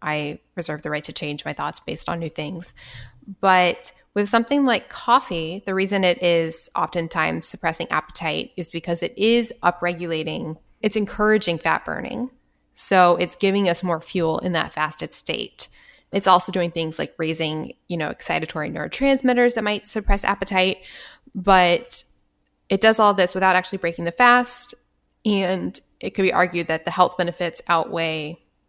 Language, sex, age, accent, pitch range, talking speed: English, female, 10-29, American, 165-210 Hz, 160 wpm